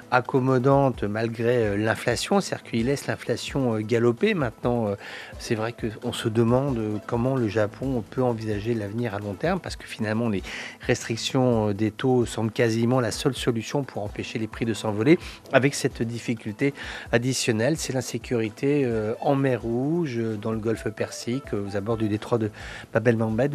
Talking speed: 155 wpm